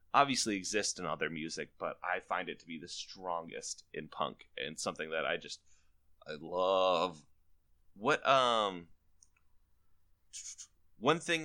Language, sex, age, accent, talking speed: English, male, 20-39, American, 140 wpm